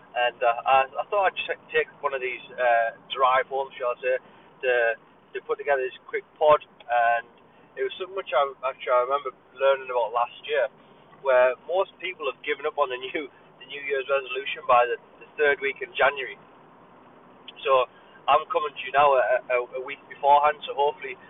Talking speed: 185 wpm